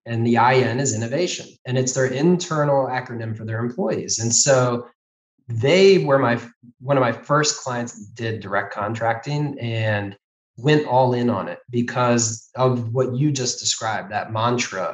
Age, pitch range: 20-39, 110-130 Hz